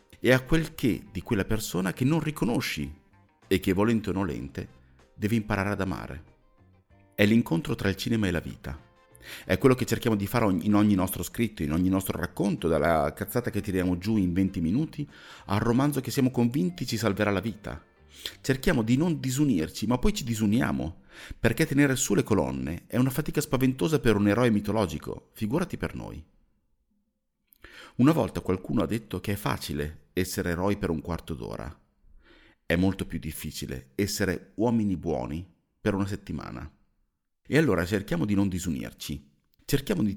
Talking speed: 170 wpm